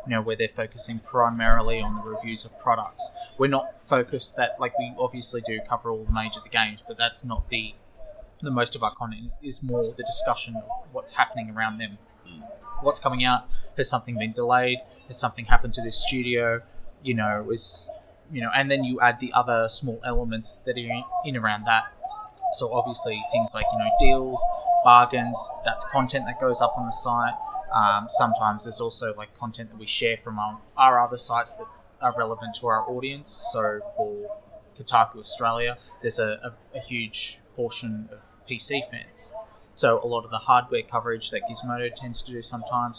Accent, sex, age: Australian, male, 20-39